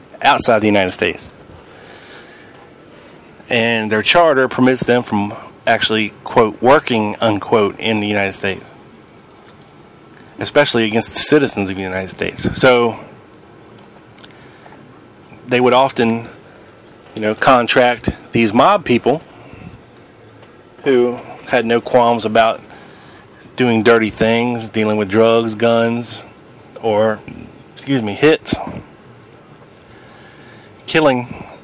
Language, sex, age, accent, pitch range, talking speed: English, male, 30-49, American, 110-130 Hz, 100 wpm